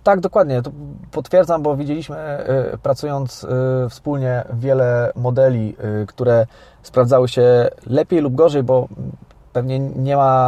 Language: Polish